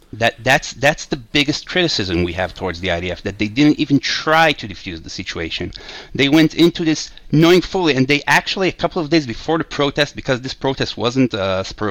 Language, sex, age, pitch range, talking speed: English, male, 30-49, 105-145 Hz, 210 wpm